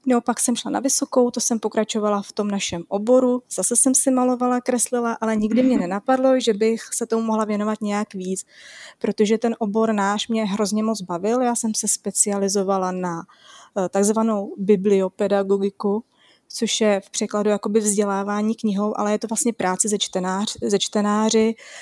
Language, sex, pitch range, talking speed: Czech, female, 200-230 Hz, 170 wpm